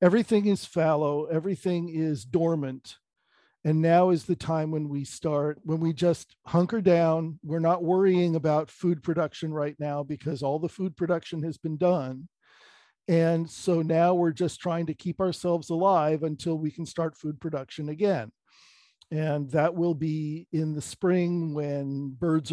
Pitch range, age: 150-180 Hz, 50-69